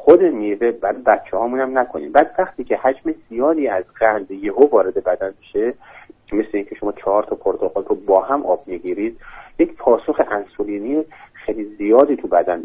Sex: male